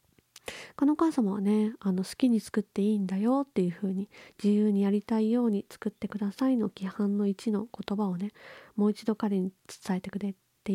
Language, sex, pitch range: Japanese, female, 190-225 Hz